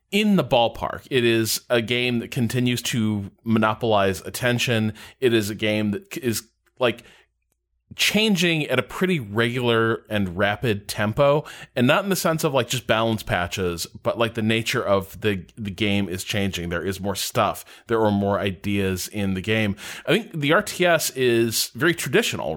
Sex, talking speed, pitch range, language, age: male, 175 wpm, 100-125 Hz, English, 30-49